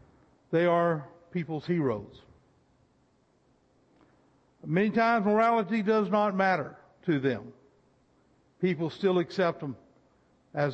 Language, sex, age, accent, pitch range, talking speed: English, male, 60-79, American, 135-200 Hz, 95 wpm